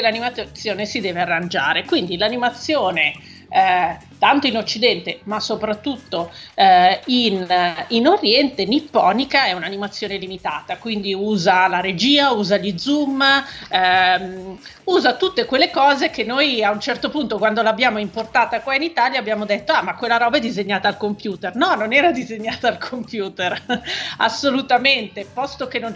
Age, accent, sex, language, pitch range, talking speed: 40-59, native, female, Italian, 195-250 Hz, 150 wpm